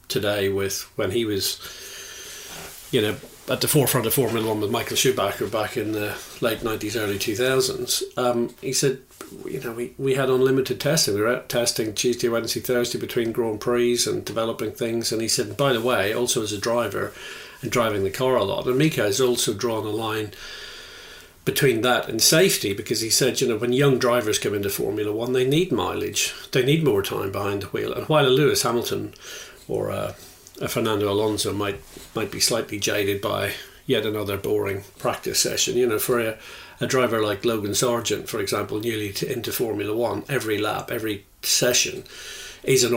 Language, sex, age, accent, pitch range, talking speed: English, male, 40-59, British, 110-155 Hz, 195 wpm